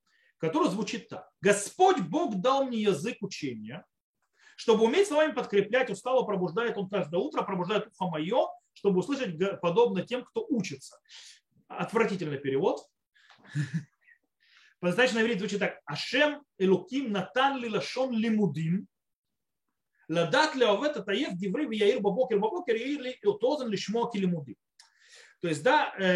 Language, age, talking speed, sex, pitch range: Russian, 30-49, 90 wpm, male, 180-265 Hz